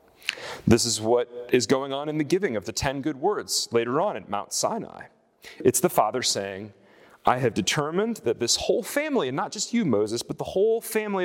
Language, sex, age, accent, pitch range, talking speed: English, male, 30-49, American, 120-180 Hz, 210 wpm